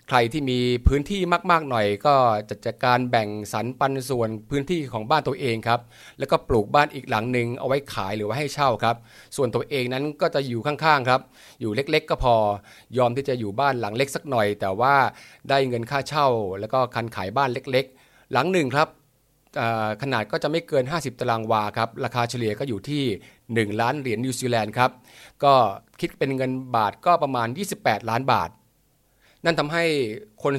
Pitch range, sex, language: 115-145 Hz, male, Thai